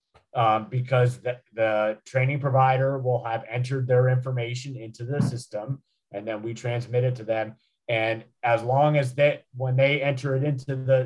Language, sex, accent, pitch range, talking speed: English, male, American, 115-135 Hz, 175 wpm